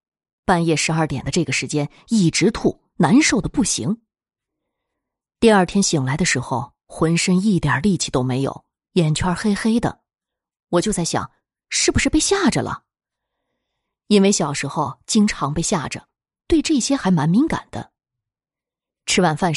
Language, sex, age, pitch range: Chinese, female, 20-39, 160-235 Hz